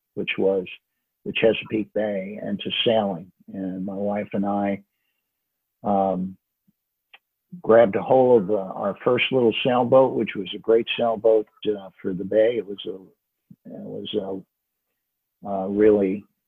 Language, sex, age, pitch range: English, male, 50-69, 100-115 Hz